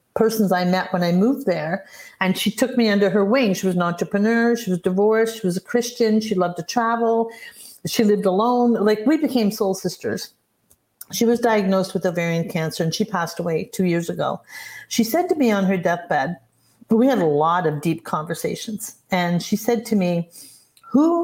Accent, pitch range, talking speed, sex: American, 175-230 Hz, 200 wpm, female